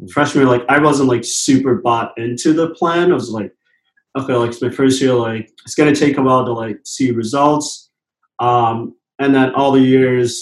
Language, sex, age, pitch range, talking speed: English, male, 20-39, 115-130 Hz, 200 wpm